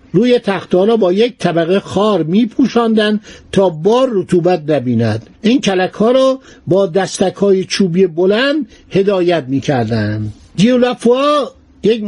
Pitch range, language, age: 165-215 Hz, Persian, 60-79